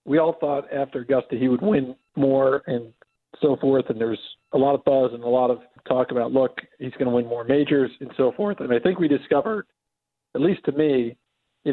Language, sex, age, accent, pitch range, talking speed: English, male, 40-59, American, 135-185 Hz, 225 wpm